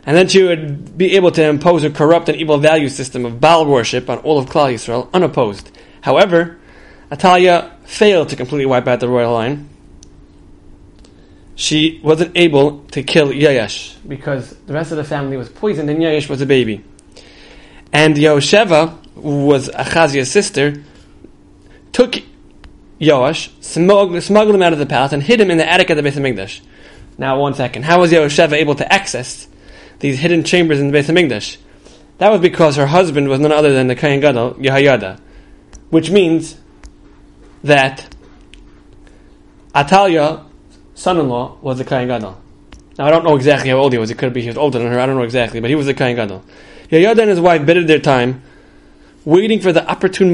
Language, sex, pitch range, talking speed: English, male, 125-165 Hz, 180 wpm